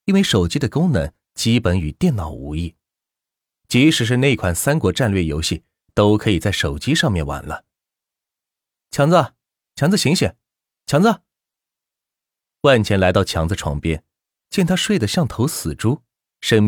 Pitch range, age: 85-120 Hz, 30-49